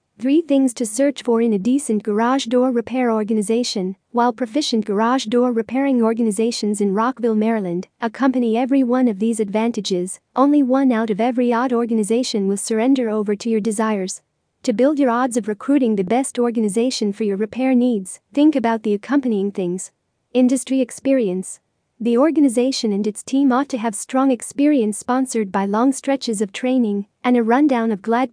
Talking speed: 170 wpm